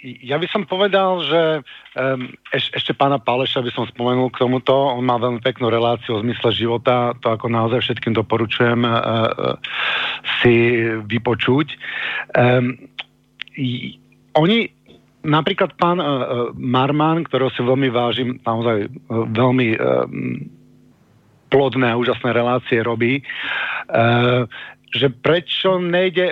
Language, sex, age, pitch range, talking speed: Slovak, male, 50-69, 120-150 Hz, 105 wpm